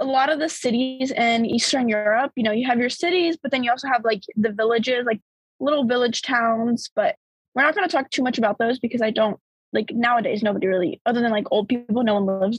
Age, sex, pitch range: 20-39, female, 230-275 Hz